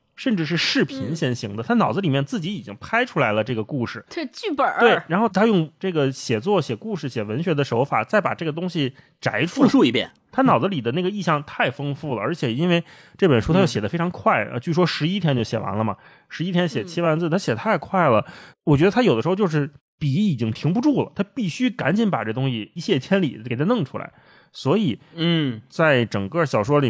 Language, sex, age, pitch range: Chinese, male, 20-39, 120-175 Hz